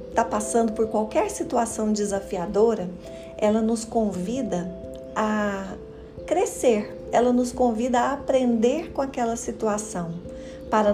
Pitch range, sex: 195-240 Hz, female